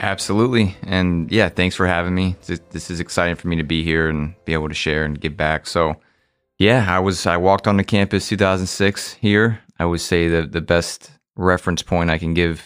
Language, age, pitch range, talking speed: English, 30-49, 80-95 Hz, 215 wpm